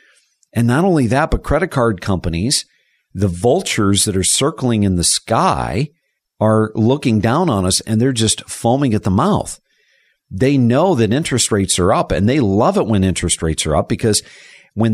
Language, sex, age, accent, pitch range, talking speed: English, male, 50-69, American, 100-130 Hz, 185 wpm